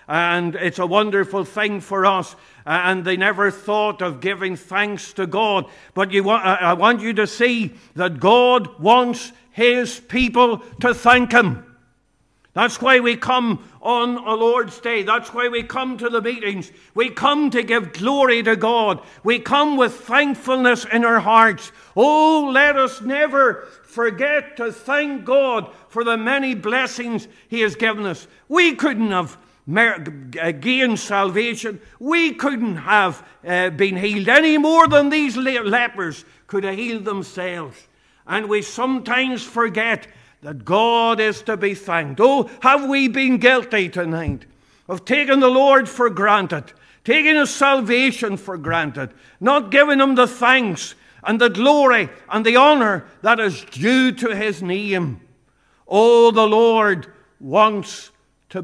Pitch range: 195-250 Hz